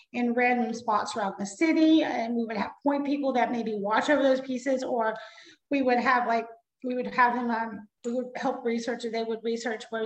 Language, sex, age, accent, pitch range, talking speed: English, female, 30-49, American, 230-290 Hz, 215 wpm